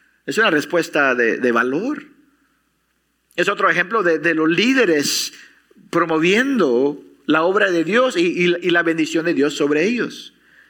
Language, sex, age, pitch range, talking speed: English, male, 50-69, 165-250 Hz, 145 wpm